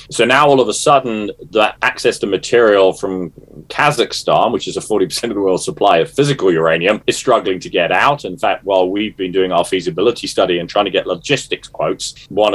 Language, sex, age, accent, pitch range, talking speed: Swedish, male, 30-49, British, 90-105 Hz, 210 wpm